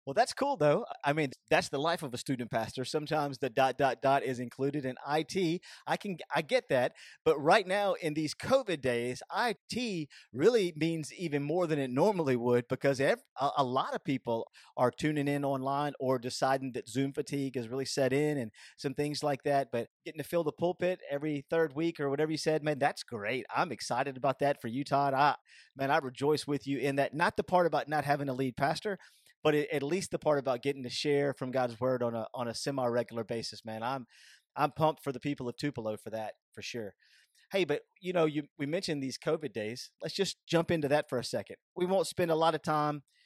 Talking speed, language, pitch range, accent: 225 wpm, English, 130-155 Hz, American